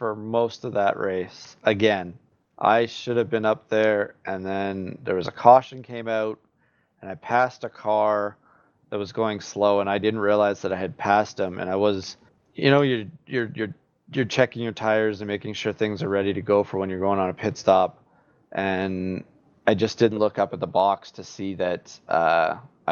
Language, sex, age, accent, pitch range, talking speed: English, male, 20-39, American, 95-110 Hz, 205 wpm